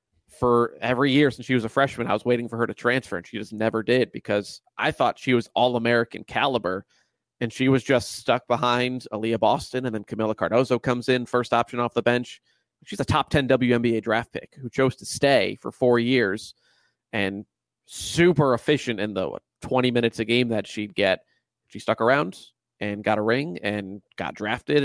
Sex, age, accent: male, 30-49, American